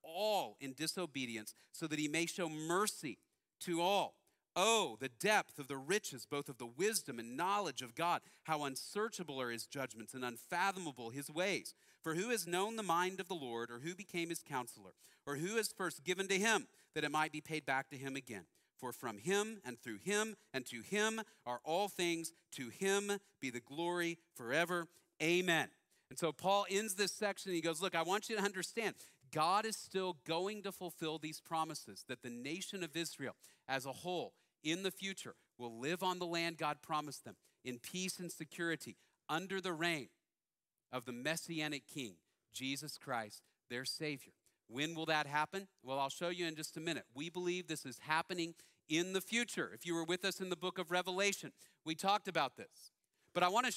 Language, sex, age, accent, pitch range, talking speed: English, male, 40-59, American, 145-190 Hz, 195 wpm